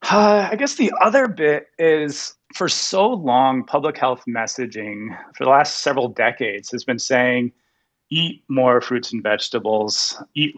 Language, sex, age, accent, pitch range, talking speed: English, male, 30-49, American, 120-150 Hz, 155 wpm